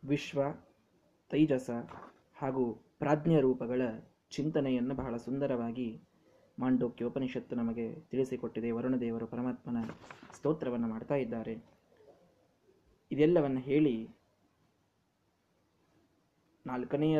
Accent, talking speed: native, 70 wpm